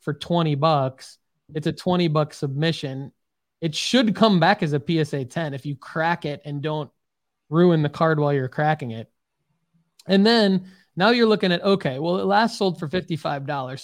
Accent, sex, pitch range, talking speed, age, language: American, male, 145-180 Hz, 180 wpm, 20-39, English